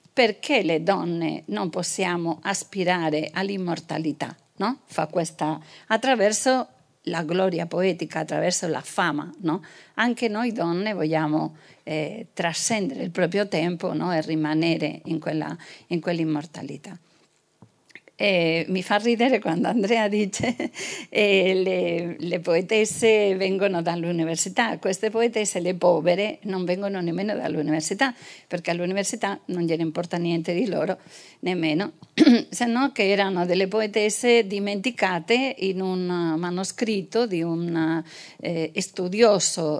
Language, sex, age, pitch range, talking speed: Italian, female, 50-69, 165-205 Hz, 120 wpm